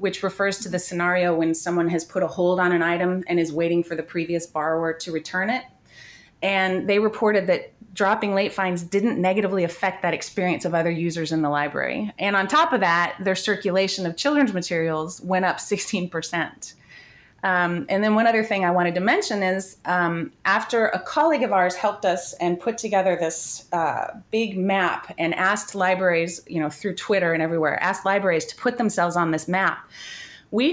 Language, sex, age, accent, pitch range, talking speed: English, female, 30-49, American, 175-215 Hz, 195 wpm